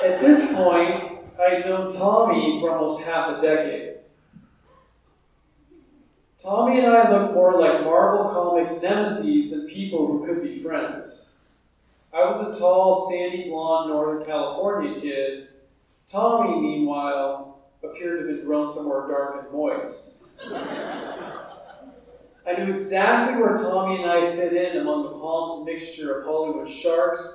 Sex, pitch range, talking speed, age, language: male, 160-210 Hz, 140 wpm, 40-59, English